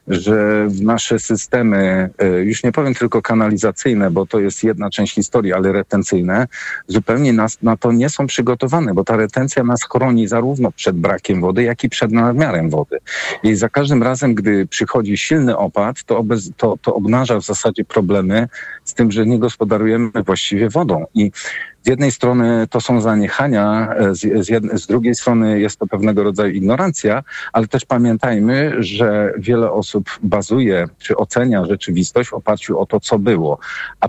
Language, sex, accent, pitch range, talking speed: Polish, male, native, 100-120 Hz, 165 wpm